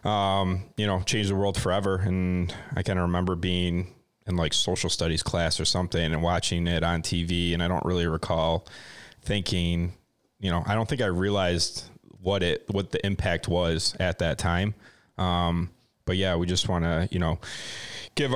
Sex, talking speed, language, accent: male, 185 wpm, English, American